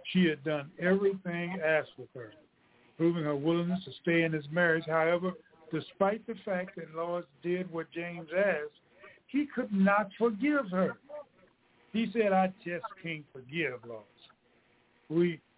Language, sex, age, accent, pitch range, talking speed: English, male, 60-79, American, 155-195 Hz, 145 wpm